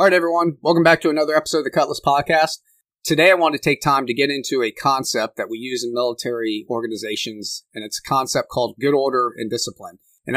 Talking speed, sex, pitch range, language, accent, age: 225 wpm, male, 120-155 Hz, English, American, 30-49